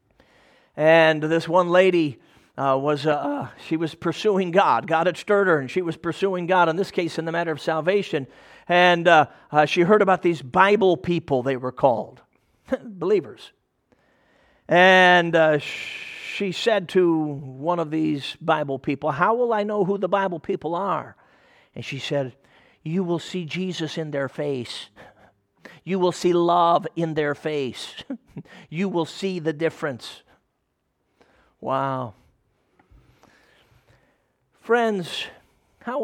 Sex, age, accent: male, 50-69, American